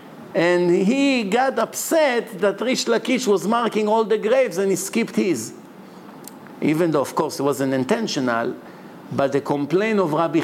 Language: English